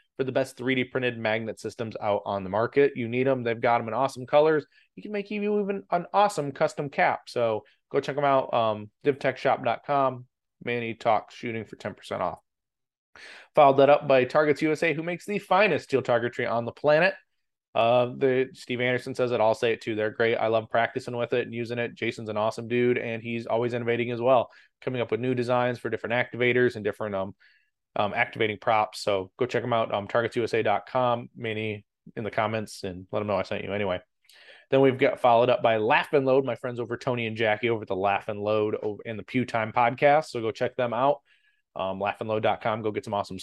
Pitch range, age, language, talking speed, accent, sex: 110-135 Hz, 20-39, English, 225 wpm, American, male